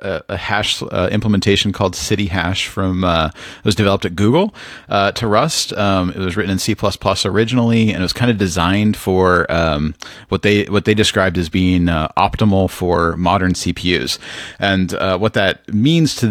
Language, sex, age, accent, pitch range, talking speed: English, male, 30-49, American, 90-110 Hz, 180 wpm